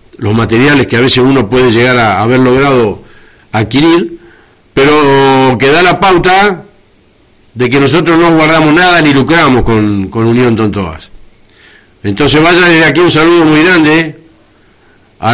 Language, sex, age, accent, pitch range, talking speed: Spanish, male, 50-69, Argentinian, 115-150 Hz, 155 wpm